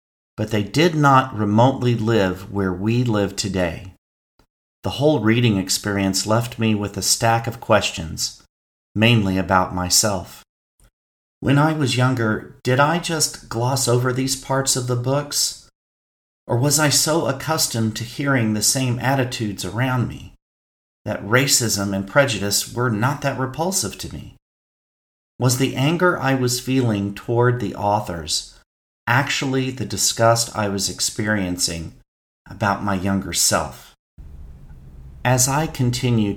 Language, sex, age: English, male, 50-69